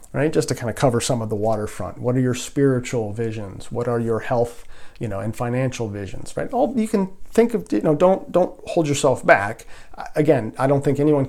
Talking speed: 225 wpm